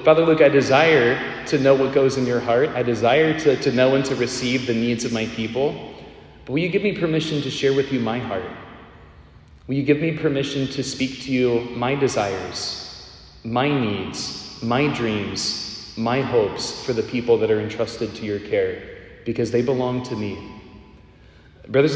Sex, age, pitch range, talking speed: male, 30-49, 115-145 Hz, 185 wpm